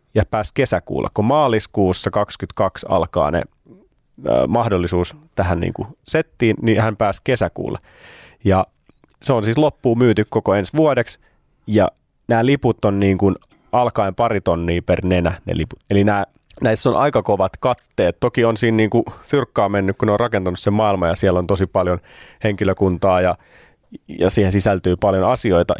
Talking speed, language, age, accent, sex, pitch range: 165 wpm, Finnish, 30-49, native, male, 90-115 Hz